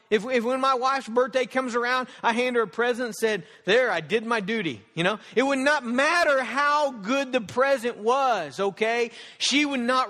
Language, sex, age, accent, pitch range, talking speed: English, male, 40-59, American, 175-245 Hz, 210 wpm